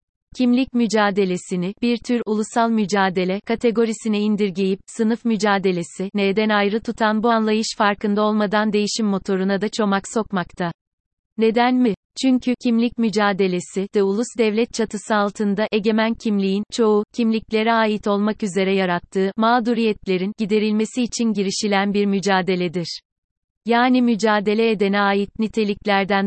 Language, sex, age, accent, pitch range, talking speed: Turkish, female, 30-49, native, 190-220 Hz, 120 wpm